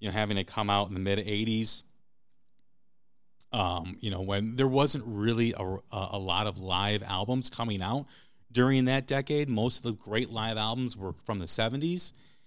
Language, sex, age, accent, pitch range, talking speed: English, male, 40-59, American, 100-125 Hz, 180 wpm